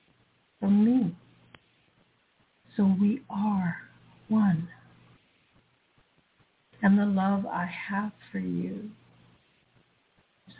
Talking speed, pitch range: 80 wpm, 175-205 Hz